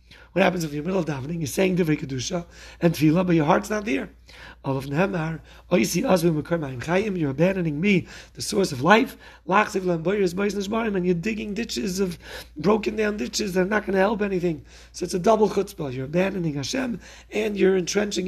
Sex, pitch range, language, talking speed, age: male, 155-195 Hz, English, 165 wpm, 40-59